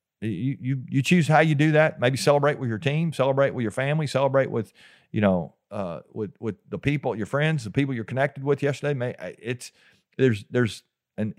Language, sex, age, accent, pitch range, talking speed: English, male, 40-59, American, 105-130 Hz, 205 wpm